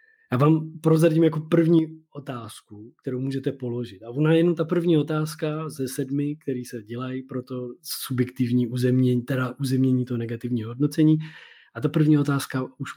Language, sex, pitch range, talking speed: Czech, male, 125-155 Hz, 160 wpm